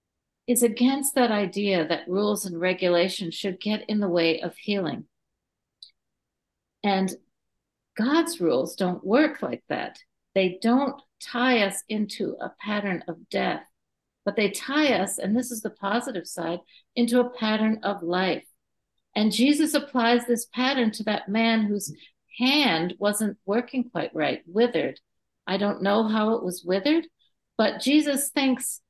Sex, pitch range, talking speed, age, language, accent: female, 195-275 Hz, 145 wpm, 60-79, English, American